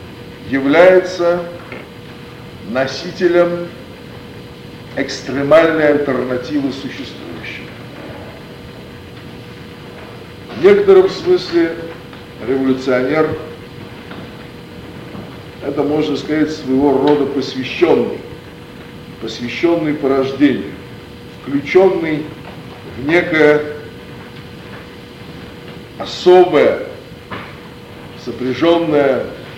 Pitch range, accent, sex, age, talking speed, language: 135-170 Hz, native, male, 50-69, 45 wpm, Russian